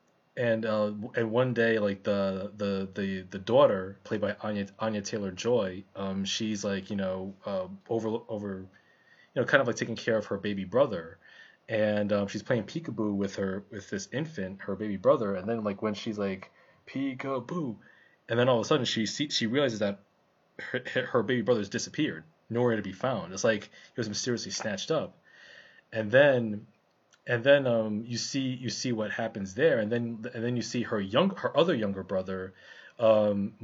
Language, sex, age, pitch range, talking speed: English, male, 20-39, 100-115 Hz, 195 wpm